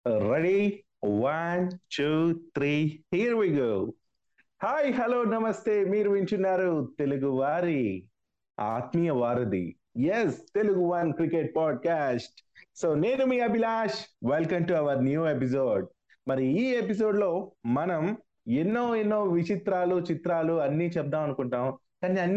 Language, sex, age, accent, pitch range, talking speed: Telugu, male, 30-49, native, 130-180 Hz, 135 wpm